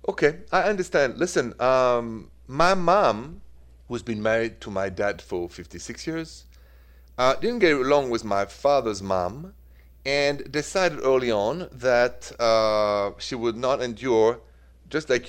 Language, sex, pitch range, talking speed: English, male, 100-160 Hz, 140 wpm